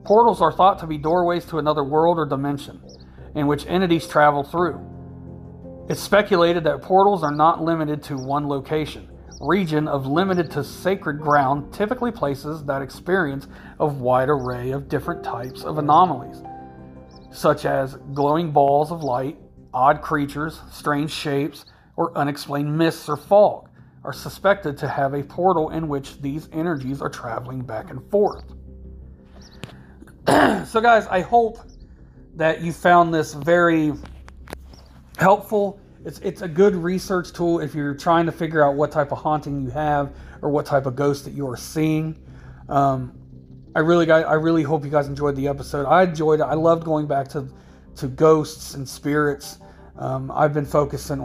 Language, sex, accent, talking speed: English, male, American, 165 wpm